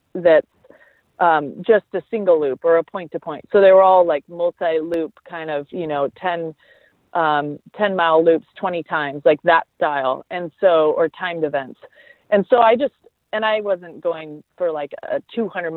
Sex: female